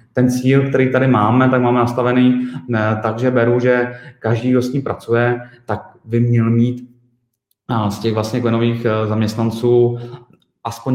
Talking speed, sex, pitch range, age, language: 145 wpm, male, 105-120 Hz, 30-49, Czech